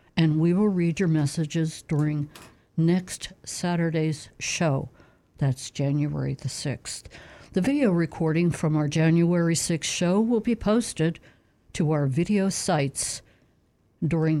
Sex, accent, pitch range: female, American, 150-180 Hz